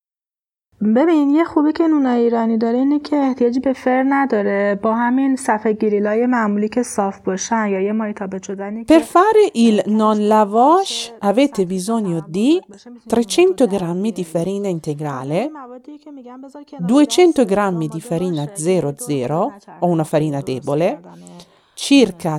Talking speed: 60 wpm